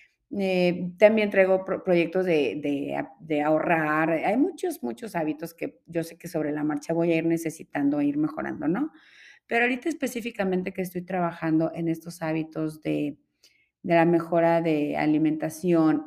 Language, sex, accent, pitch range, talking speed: Spanish, female, Mexican, 165-200 Hz, 160 wpm